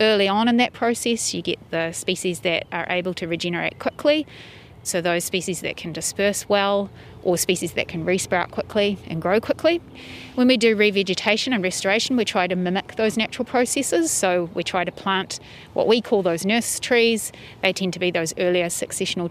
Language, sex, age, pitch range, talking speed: English, female, 30-49, 180-220 Hz, 195 wpm